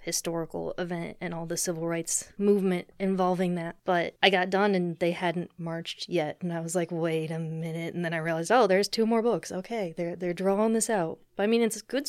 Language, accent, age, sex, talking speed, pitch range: English, American, 30-49, female, 235 wpm, 170-195 Hz